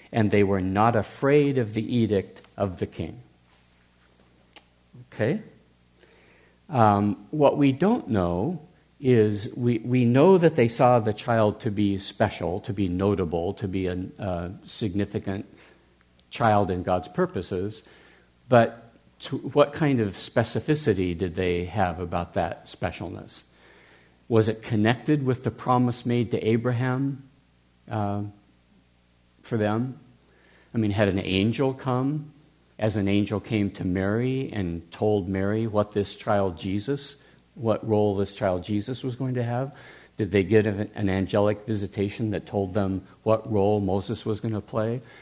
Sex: male